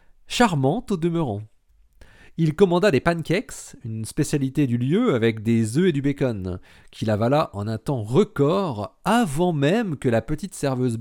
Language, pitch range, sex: French, 120-180 Hz, male